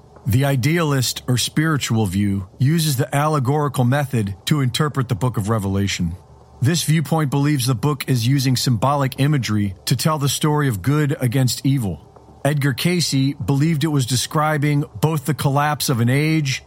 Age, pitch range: 40-59, 120-150 Hz